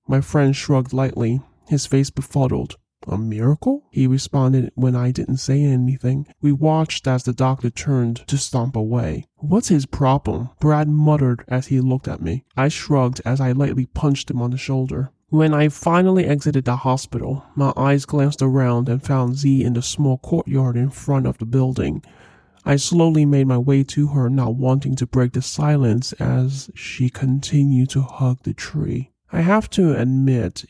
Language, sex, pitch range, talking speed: English, male, 125-145 Hz, 180 wpm